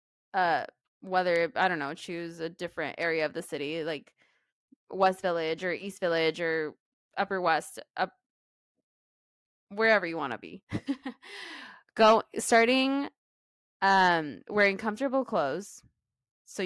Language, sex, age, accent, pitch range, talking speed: Spanish, female, 20-39, American, 175-210 Hz, 125 wpm